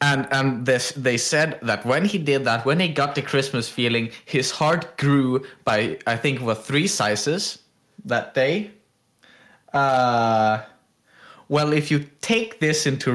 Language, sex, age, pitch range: English, male, 20-39, 115-140 Hz